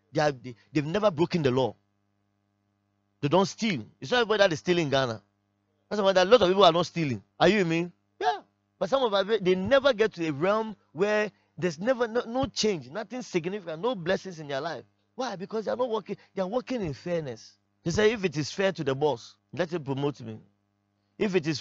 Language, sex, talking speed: English, male, 230 wpm